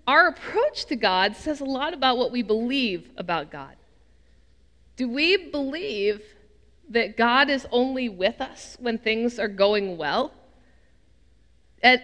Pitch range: 195-290 Hz